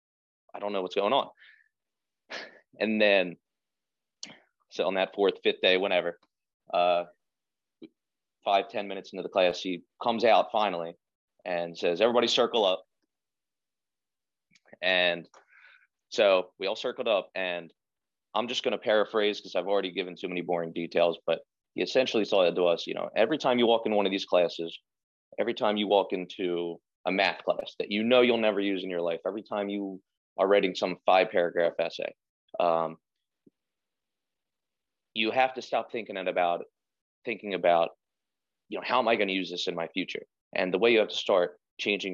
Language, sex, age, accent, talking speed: English, male, 30-49, American, 170 wpm